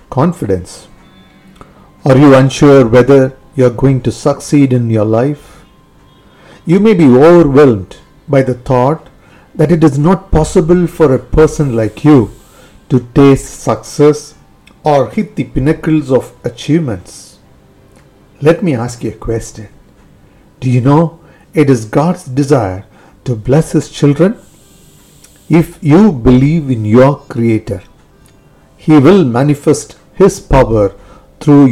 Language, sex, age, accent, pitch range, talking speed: English, male, 50-69, Indian, 115-155 Hz, 130 wpm